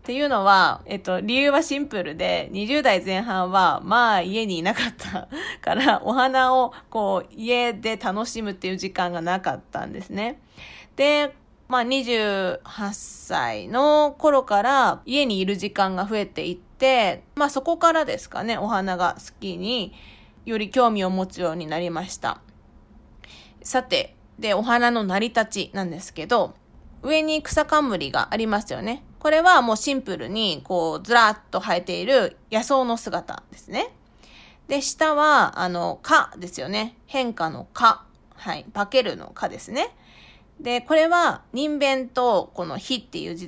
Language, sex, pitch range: Japanese, female, 190-270 Hz